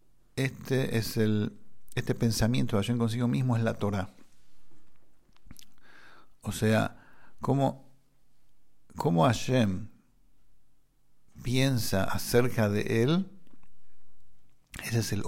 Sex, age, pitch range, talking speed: male, 50-69, 105-125 Hz, 95 wpm